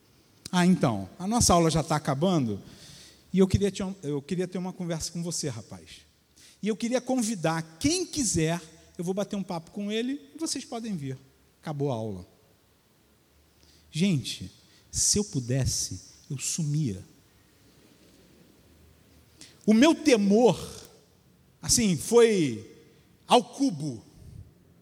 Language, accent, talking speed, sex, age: Portuguese, Brazilian, 125 wpm, male, 50-69